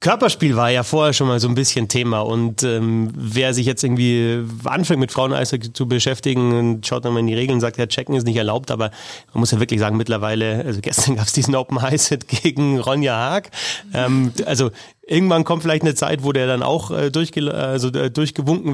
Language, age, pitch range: German, 30-49, 125-150 Hz